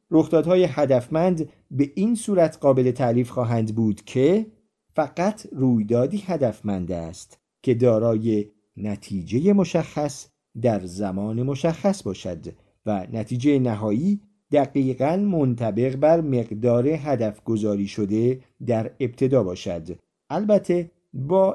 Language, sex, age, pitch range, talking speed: Persian, male, 50-69, 115-165 Hz, 105 wpm